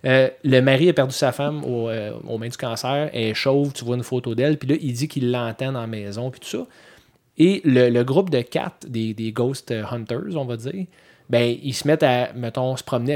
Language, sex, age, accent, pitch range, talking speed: French, male, 30-49, Canadian, 115-140 Hz, 240 wpm